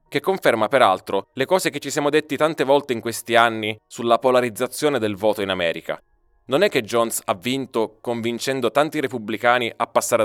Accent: native